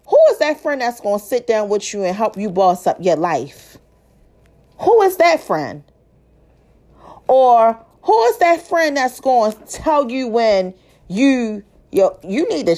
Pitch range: 215-285 Hz